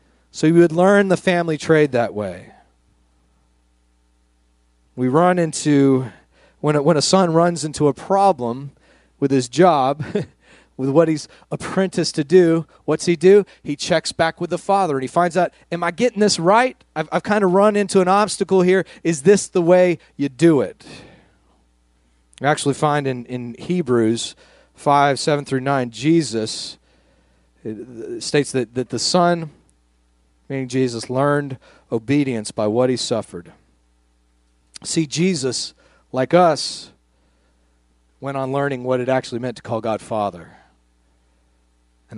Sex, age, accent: male, 30-49, American